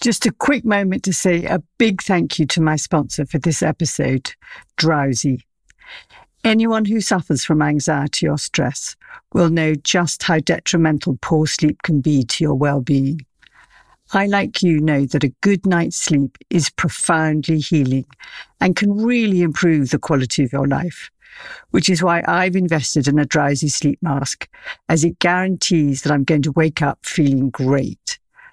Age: 60-79